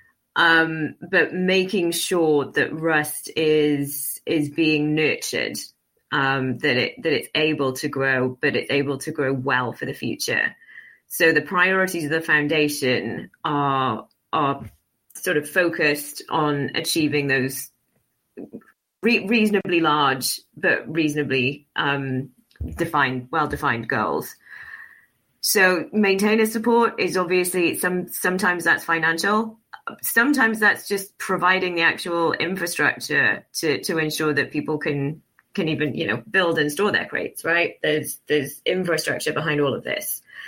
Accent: British